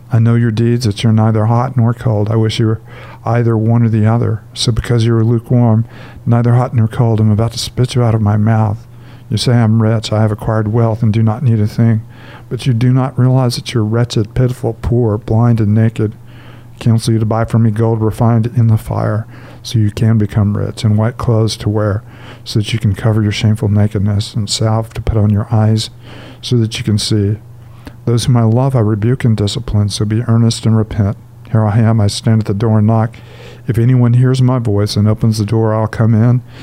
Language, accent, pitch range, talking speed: English, American, 110-120 Hz, 230 wpm